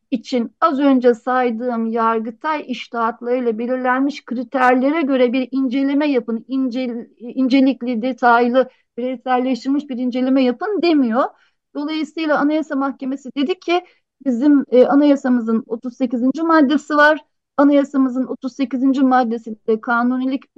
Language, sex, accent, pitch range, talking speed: Turkish, female, native, 245-290 Hz, 100 wpm